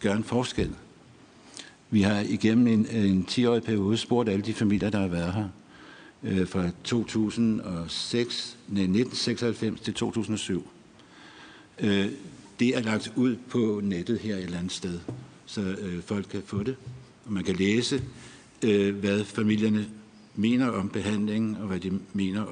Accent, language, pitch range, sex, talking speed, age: native, Danish, 95-110 Hz, male, 140 wpm, 60-79